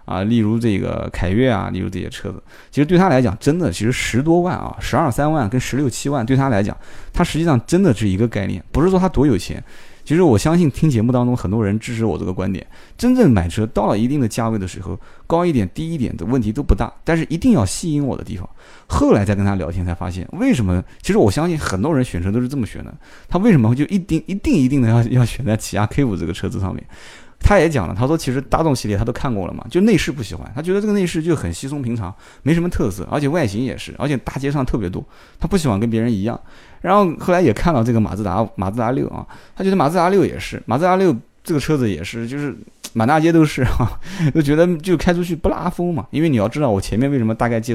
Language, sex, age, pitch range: Chinese, male, 20-39, 105-155 Hz